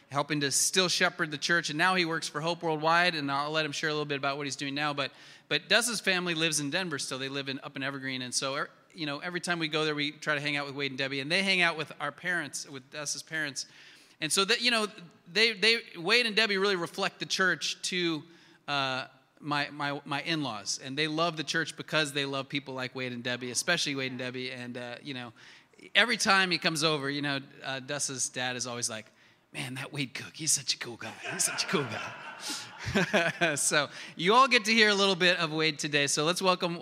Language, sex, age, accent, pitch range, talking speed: English, male, 30-49, American, 140-175 Hz, 250 wpm